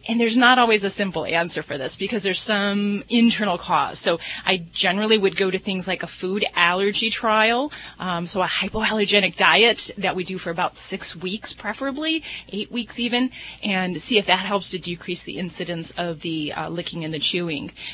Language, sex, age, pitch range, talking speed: English, female, 30-49, 175-220 Hz, 195 wpm